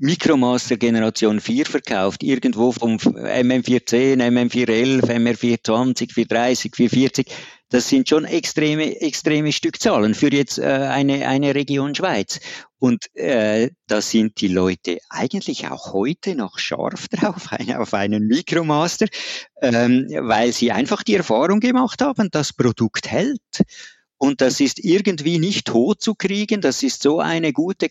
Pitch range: 115-155 Hz